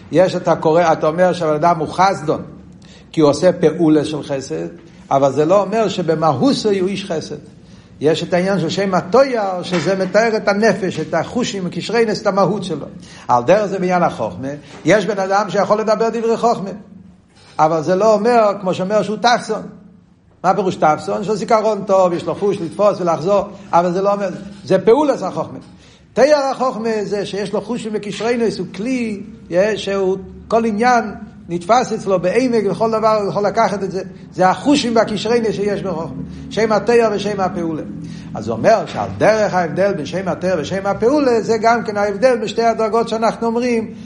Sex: male